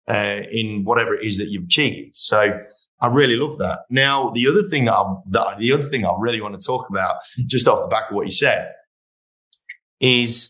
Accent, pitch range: British, 100-130 Hz